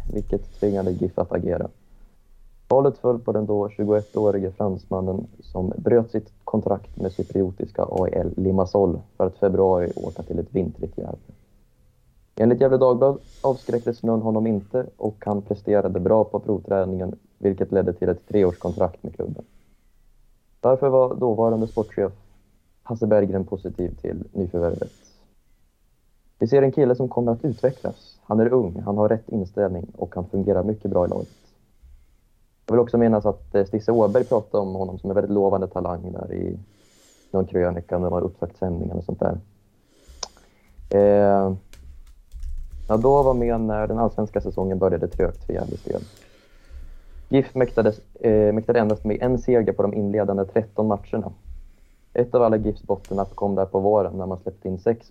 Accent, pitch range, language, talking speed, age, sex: native, 95-110 Hz, Swedish, 155 wpm, 30-49, male